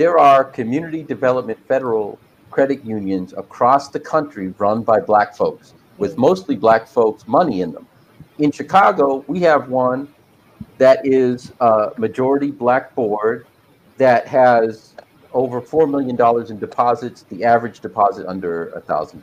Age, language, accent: 50-69, English, American